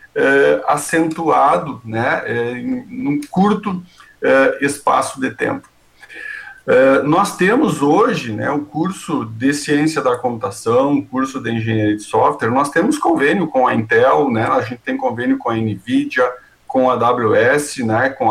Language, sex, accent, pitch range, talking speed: Portuguese, male, Brazilian, 145-205 Hz, 160 wpm